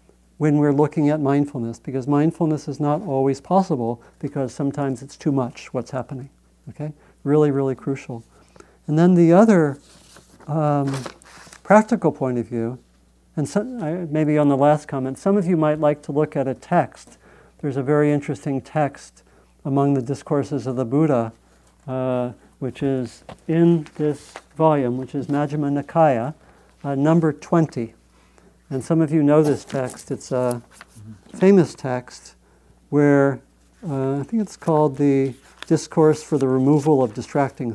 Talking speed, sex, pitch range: 150 wpm, male, 130-155 Hz